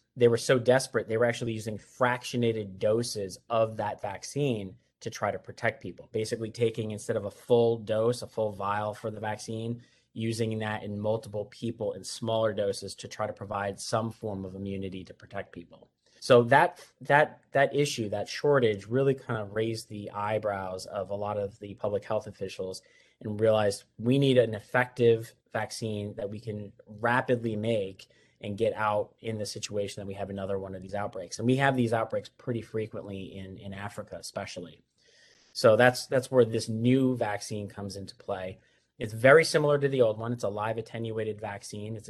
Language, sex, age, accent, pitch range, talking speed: English, male, 30-49, American, 105-120 Hz, 185 wpm